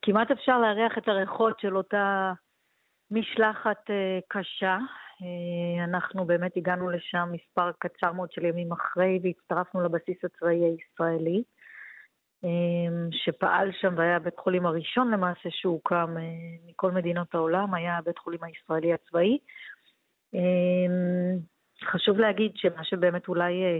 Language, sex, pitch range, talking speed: Hebrew, female, 170-205 Hz, 110 wpm